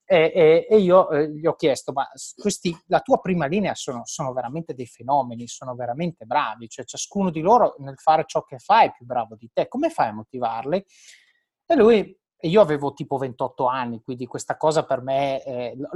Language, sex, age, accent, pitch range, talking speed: Italian, male, 30-49, native, 140-190 Hz, 190 wpm